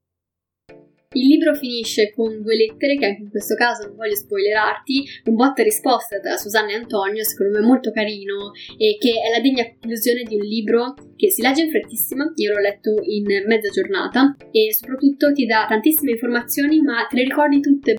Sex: female